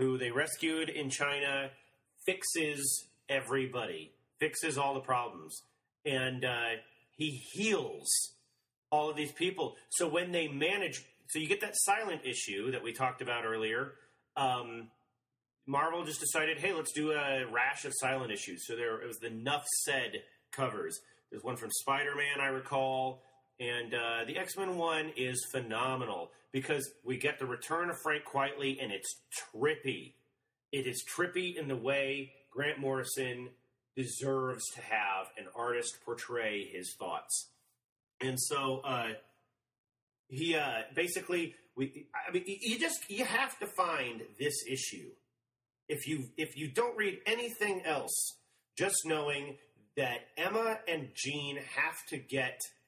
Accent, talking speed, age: American, 145 wpm, 30-49